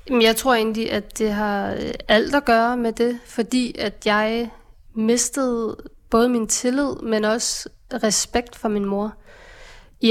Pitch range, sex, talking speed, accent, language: 210-240 Hz, female, 150 wpm, native, Danish